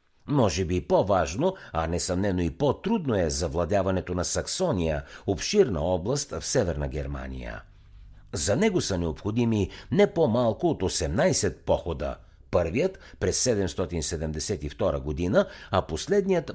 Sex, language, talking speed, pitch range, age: male, Bulgarian, 115 wpm, 80-125 Hz, 60-79